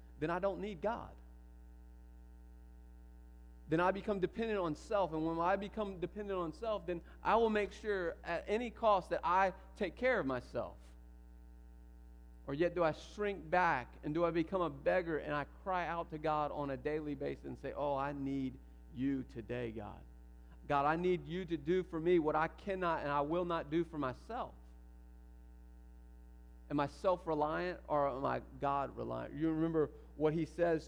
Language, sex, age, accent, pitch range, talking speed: English, male, 40-59, American, 115-180 Hz, 180 wpm